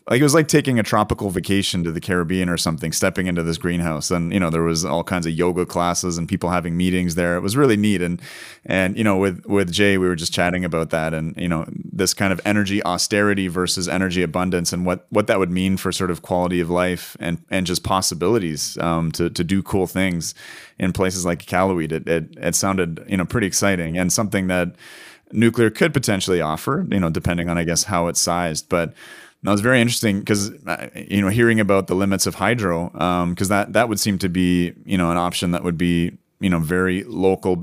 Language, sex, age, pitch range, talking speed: English, male, 30-49, 85-100 Hz, 230 wpm